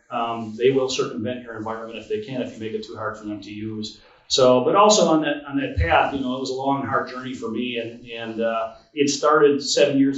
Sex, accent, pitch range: male, American, 110-140 Hz